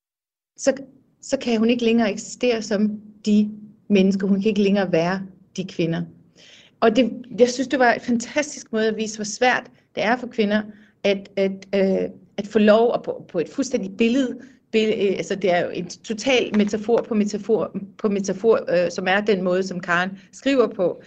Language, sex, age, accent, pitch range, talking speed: Danish, female, 30-49, native, 195-230 Hz, 175 wpm